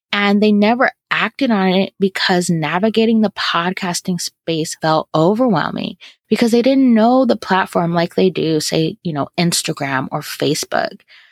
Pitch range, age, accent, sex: 180-235 Hz, 20-39, American, female